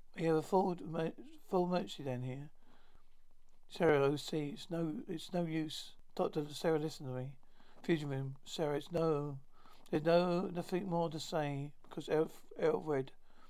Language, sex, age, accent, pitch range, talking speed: English, male, 60-79, British, 140-175 Hz, 150 wpm